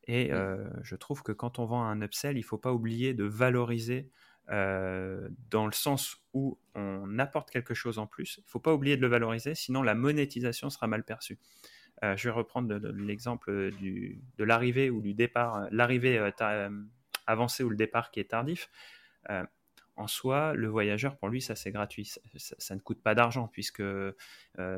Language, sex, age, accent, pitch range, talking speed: French, male, 30-49, French, 105-130 Hz, 195 wpm